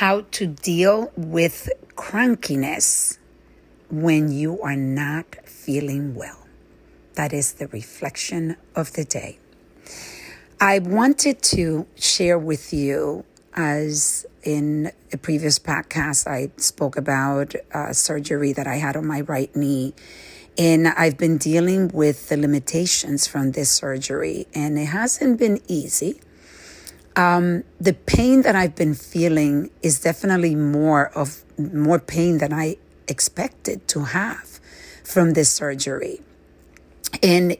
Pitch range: 145-180 Hz